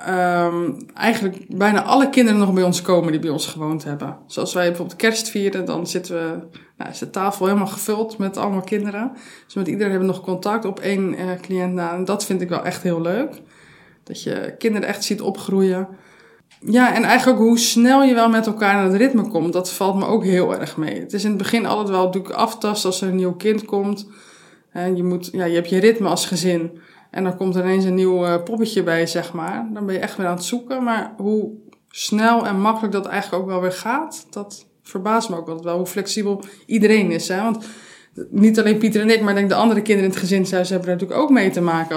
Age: 20-39